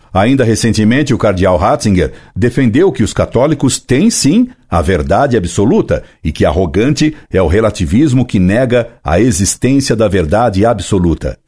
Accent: Brazilian